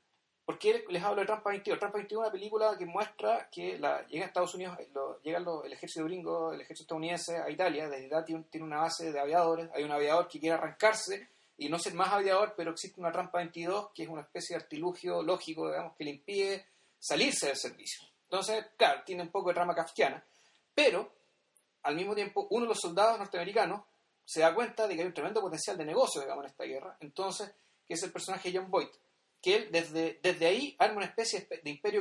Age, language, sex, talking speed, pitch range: 30-49, Spanish, male, 220 wpm, 160-210 Hz